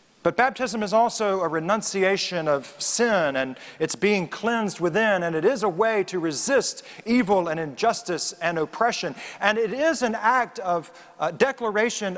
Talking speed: 160 wpm